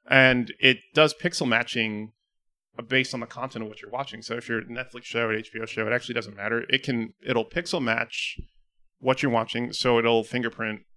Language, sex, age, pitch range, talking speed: English, male, 30-49, 110-135 Hz, 200 wpm